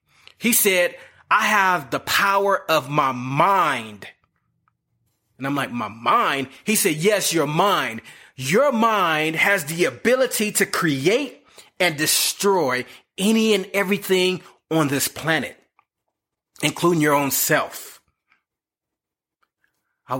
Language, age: English, 30-49